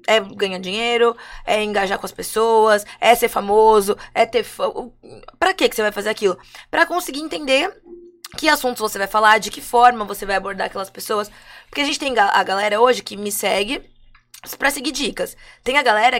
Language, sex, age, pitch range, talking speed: Portuguese, female, 20-39, 215-290 Hz, 195 wpm